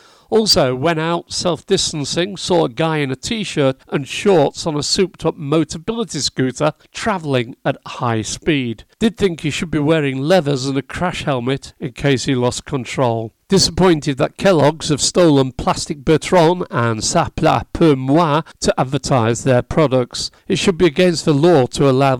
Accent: British